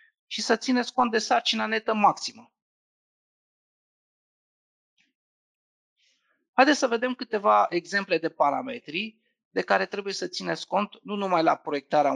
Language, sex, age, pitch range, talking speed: Romanian, male, 30-49, 160-230 Hz, 125 wpm